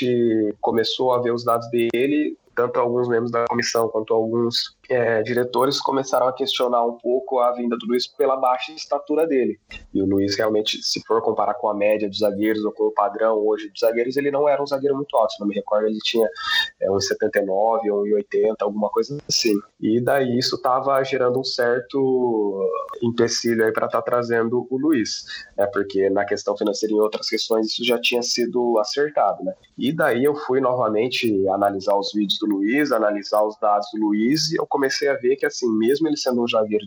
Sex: male